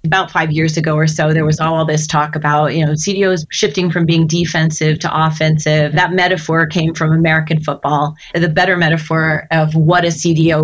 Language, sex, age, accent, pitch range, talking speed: English, female, 30-49, American, 155-175 Hz, 190 wpm